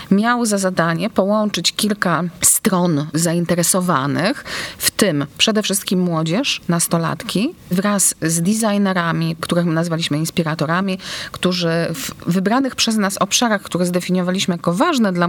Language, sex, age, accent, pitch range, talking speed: Polish, female, 30-49, native, 165-200 Hz, 120 wpm